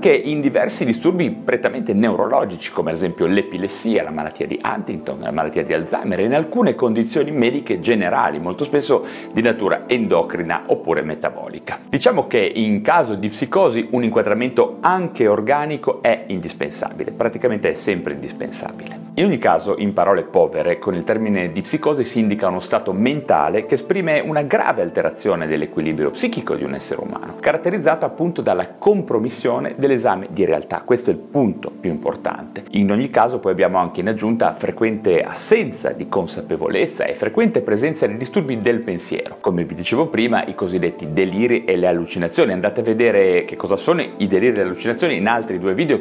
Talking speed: 170 wpm